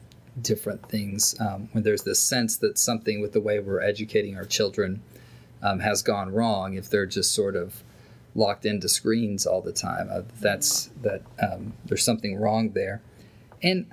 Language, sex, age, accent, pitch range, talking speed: English, male, 40-59, American, 110-135 Hz, 170 wpm